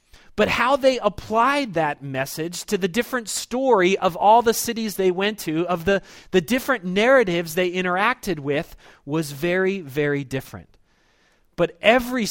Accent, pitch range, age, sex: American, 140-195 Hz, 30-49, male